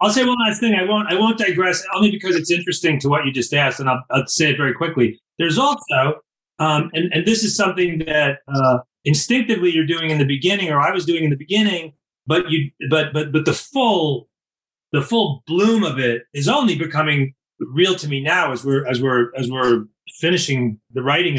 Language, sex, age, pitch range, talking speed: English, male, 30-49, 150-200 Hz, 215 wpm